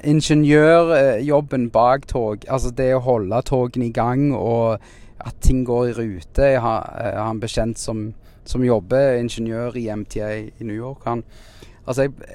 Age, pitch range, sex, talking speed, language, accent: 30-49, 105-130 Hz, male, 165 wpm, English, Norwegian